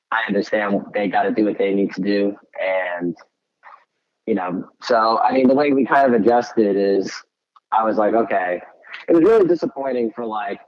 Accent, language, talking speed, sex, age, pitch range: American, English, 185 wpm, male, 20-39, 100-115 Hz